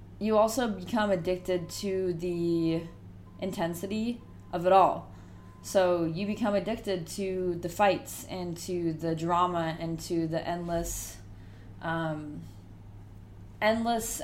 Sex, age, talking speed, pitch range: female, 20-39, 115 wpm, 155-190 Hz